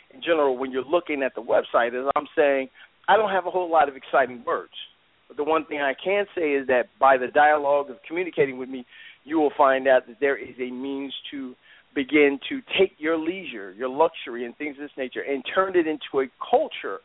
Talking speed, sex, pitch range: 225 wpm, male, 130-165 Hz